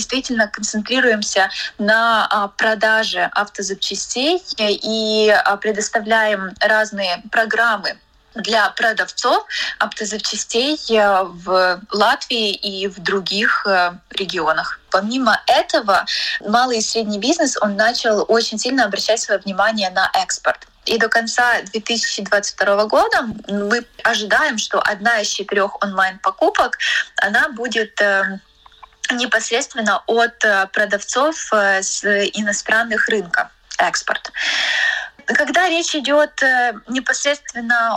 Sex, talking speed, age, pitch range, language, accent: female, 90 wpm, 20-39, 205-250 Hz, Russian, native